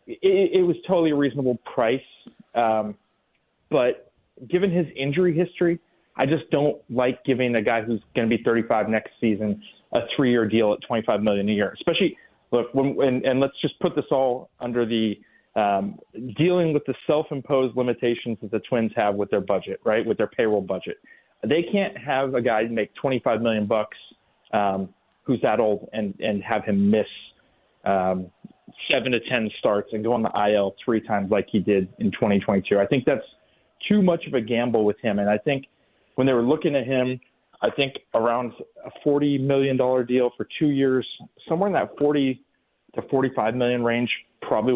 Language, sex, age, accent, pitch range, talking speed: English, male, 30-49, American, 110-140 Hz, 200 wpm